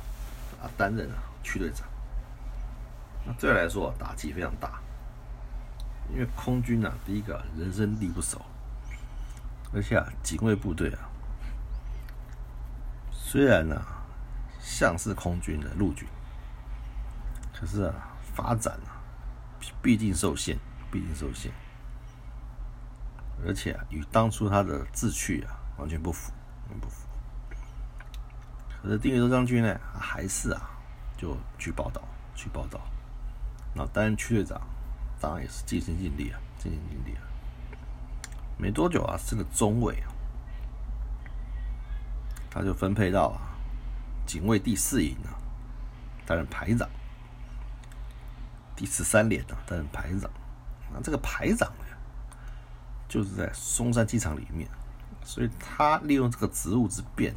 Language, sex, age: Chinese, male, 60-79